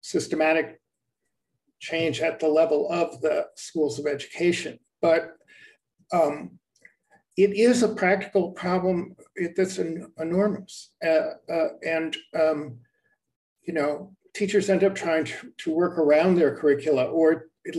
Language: English